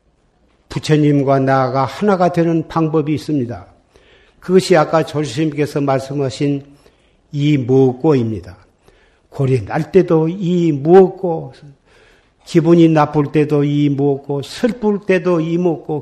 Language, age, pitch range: Korean, 50-69, 135-180 Hz